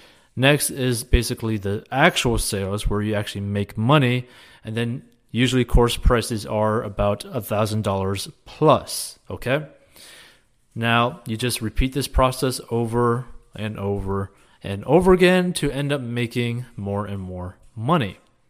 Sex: male